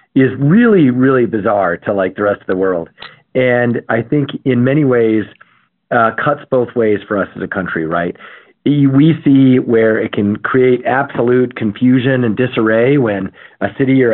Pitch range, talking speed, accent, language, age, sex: 115-135 Hz, 175 wpm, American, English, 40-59, male